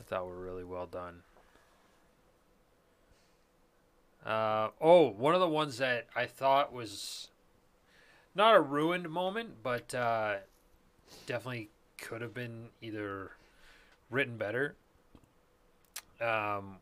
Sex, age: male, 30-49